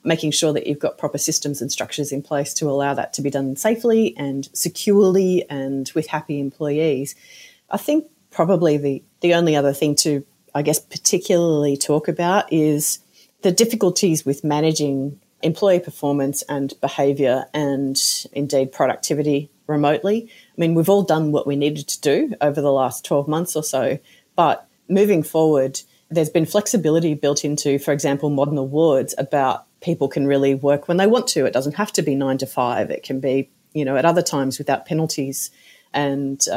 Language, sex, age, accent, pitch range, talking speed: English, female, 30-49, Australian, 140-165 Hz, 175 wpm